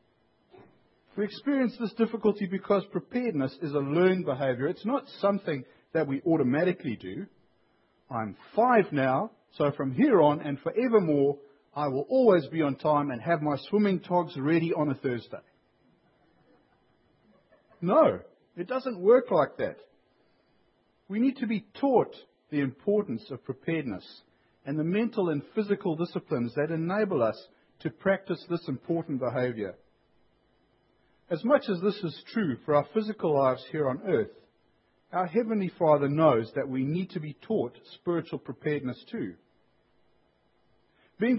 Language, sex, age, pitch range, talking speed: English, male, 50-69, 140-200 Hz, 140 wpm